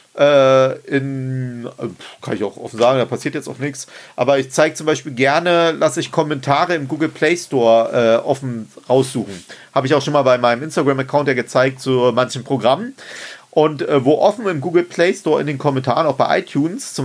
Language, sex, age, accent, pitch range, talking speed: German, male, 40-59, German, 135-200 Hz, 200 wpm